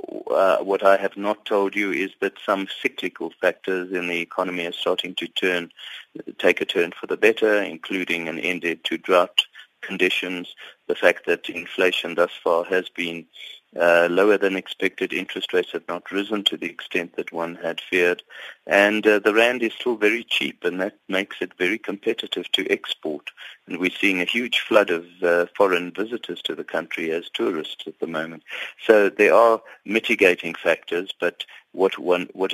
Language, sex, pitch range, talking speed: English, male, 85-100 Hz, 180 wpm